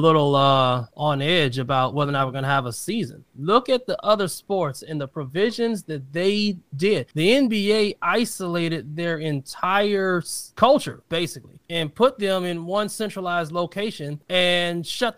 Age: 20-39